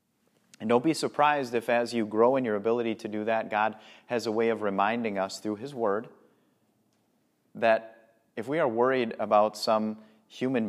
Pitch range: 105-135 Hz